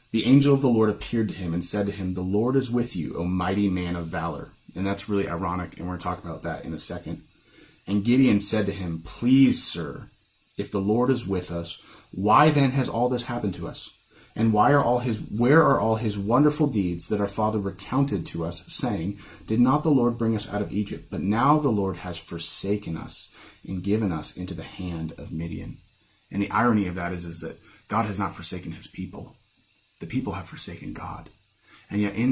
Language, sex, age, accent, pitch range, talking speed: English, male, 30-49, American, 90-120 Hz, 225 wpm